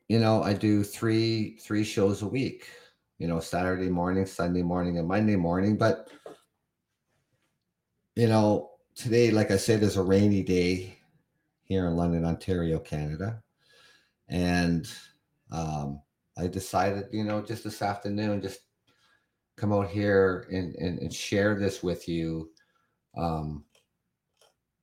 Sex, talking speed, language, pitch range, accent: male, 135 wpm, English, 85-105 Hz, American